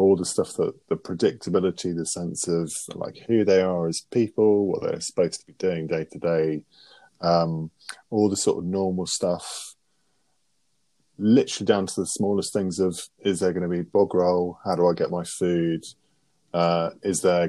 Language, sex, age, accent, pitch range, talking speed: English, male, 20-39, British, 85-105 Hz, 185 wpm